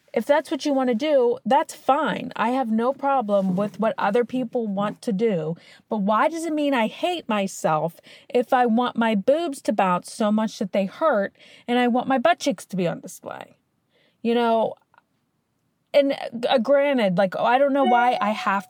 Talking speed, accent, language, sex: 200 wpm, American, English, female